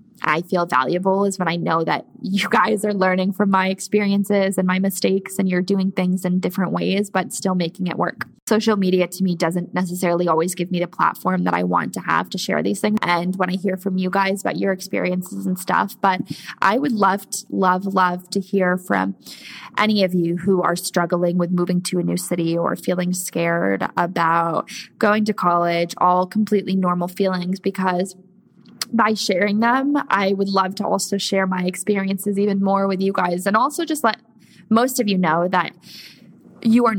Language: English